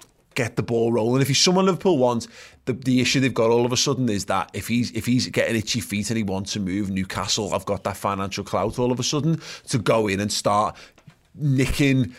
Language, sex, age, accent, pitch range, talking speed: English, male, 30-49, British, 100-125 Hz, 235 wpm